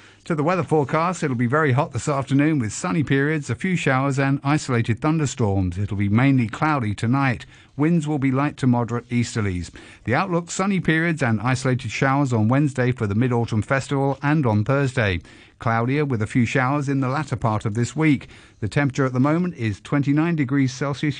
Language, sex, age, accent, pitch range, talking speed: English, male, 50-69, British, 110-145 Hz, 190 wpm